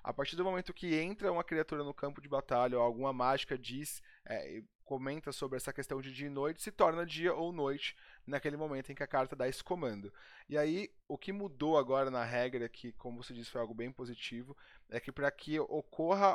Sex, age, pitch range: male, 20-39, 125-155 Hz